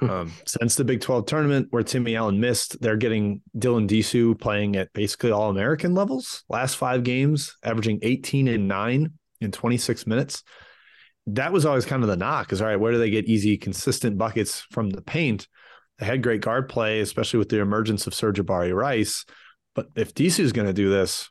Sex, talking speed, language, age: male, 195 wpm, English, 30-49